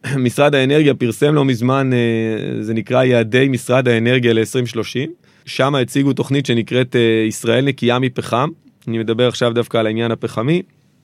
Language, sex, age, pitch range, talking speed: Hebrew, male, 30-49, 115-135 Hz, 135 wpm